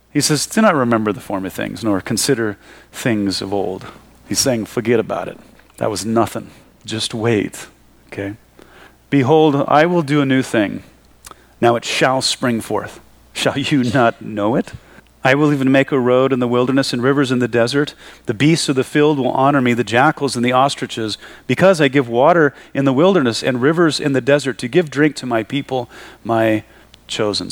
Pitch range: 110-135 Hz